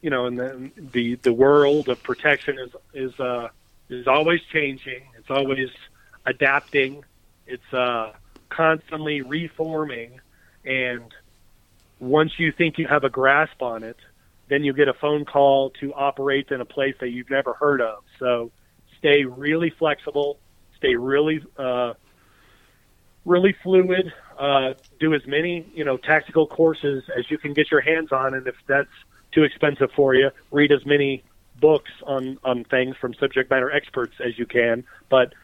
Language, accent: English, American